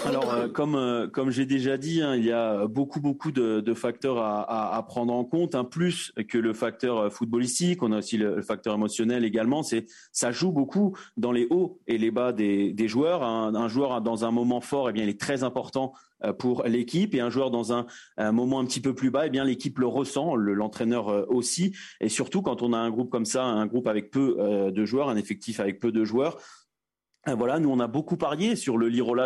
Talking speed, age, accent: 240 wpm, 30-49, French